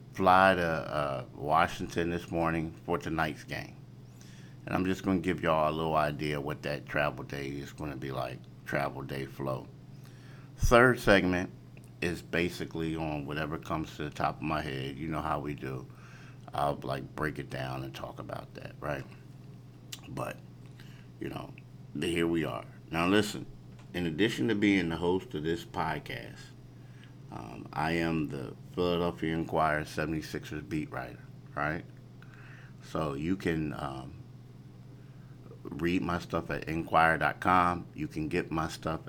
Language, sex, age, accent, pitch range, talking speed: English, male, 50-69, American, 75-95 Hz, 155 wpm